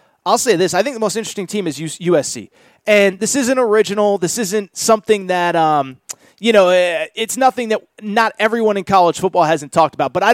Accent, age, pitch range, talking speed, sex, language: American, 30-49, 180-235 Hz, 205 wpm, male, English